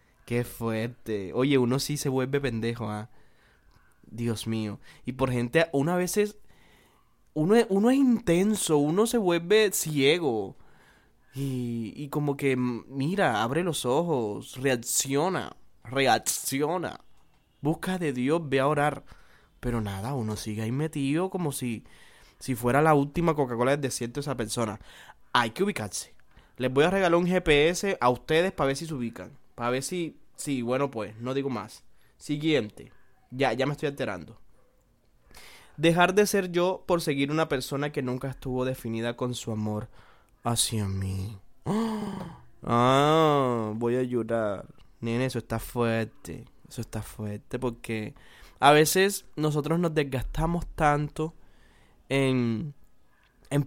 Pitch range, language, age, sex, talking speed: 120-155 Hz, Spanish, 20-39, male, 145 wpm